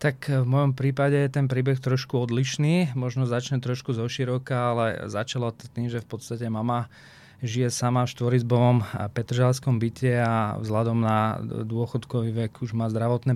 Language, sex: Slovak, male